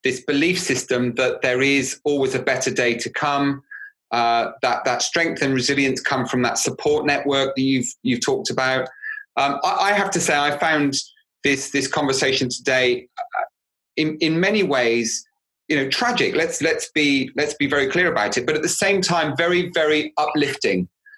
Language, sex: English, male